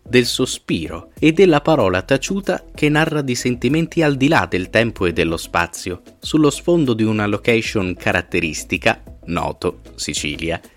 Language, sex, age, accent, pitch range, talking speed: Italian, male, 30-49, native, 90-140 Hz, 145 wpm